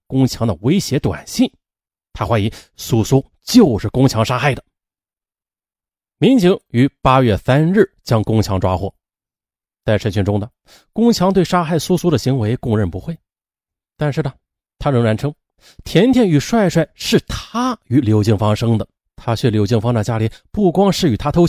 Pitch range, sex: 105-170 Hz, male